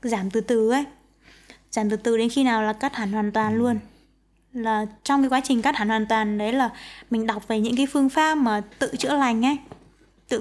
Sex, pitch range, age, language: female, 225-270 Hz, 20-39, Vietnamese